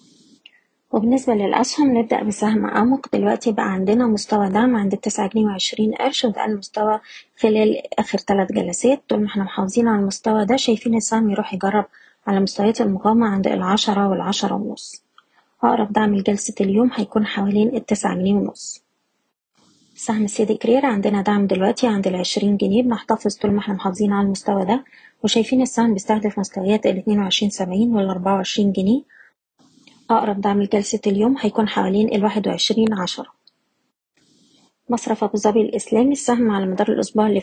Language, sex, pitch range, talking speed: Arabic, female, 200-230 Hz, 150 wpm